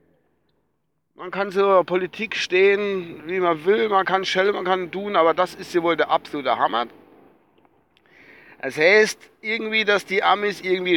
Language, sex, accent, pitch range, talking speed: German, male, German, 140-195 Hz, 165 wpm